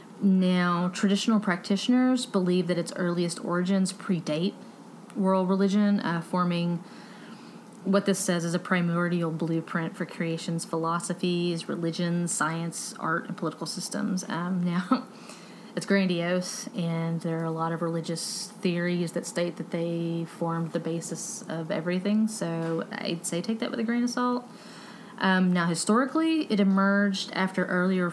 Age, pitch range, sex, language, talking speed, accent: 30-49, 170-210 Hz, female, English, 145 wpm, American